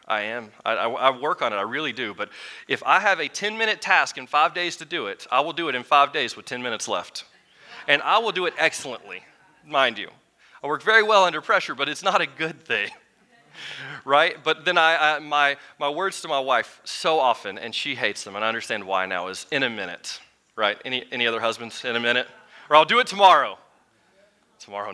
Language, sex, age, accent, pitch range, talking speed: English, male, 30-49, American, 125-180 Hz, 230 wpm